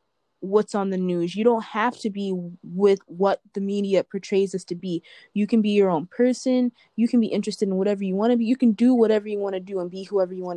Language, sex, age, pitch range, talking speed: English, female, 20-39, 180-210 Hz, 260 wpm